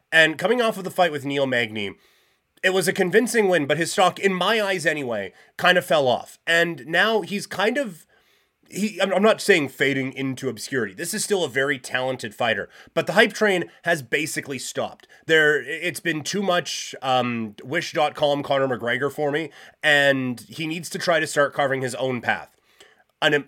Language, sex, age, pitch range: English, male, 30-49, 135-180 Hz